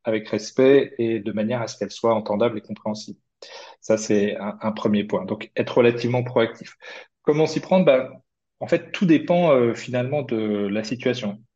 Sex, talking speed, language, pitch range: male, 180 wpm, French, 110-135 Hz